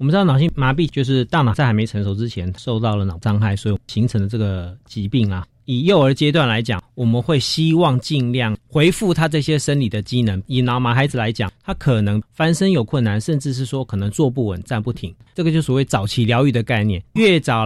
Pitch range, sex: 110-150 Hz, male